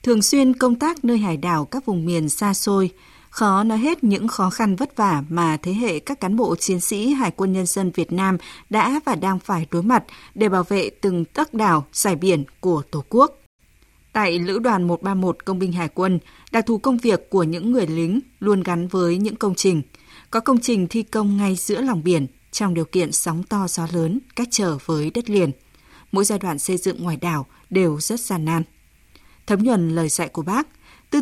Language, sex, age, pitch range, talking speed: Vietnamese, female, 20-39, 170-225 Hz, 215 wpm